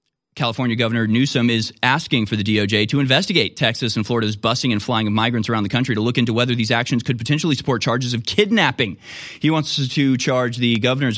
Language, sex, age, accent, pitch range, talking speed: English, male, 30-49, American, 115-140 Hz, 210 wpm